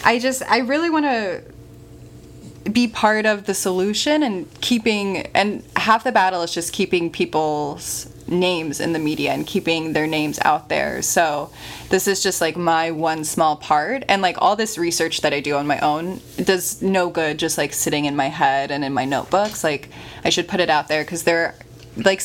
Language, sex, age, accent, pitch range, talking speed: English, female, 20-39, American, 155-195 Hz, 200 wpm